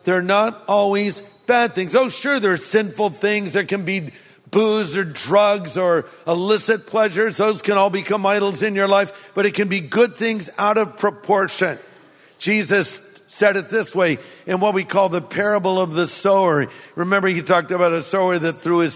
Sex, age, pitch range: male, 50-69, 175-205 Hz